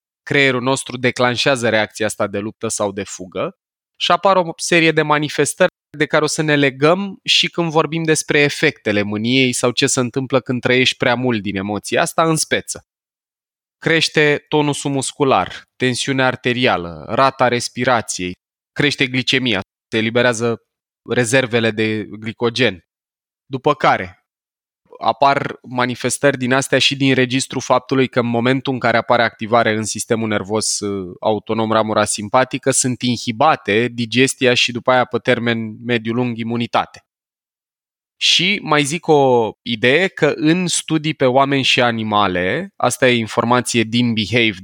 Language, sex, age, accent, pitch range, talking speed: Romanian, male, 20-39, native, 110-140 Hz, 140 wpm